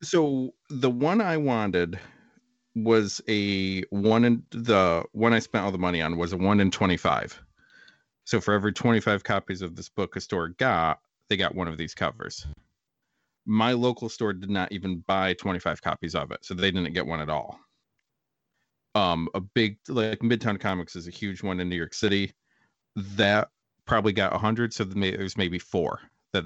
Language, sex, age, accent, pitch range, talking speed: English, male, 40-59, American, 90-115 Hz, 185 wpm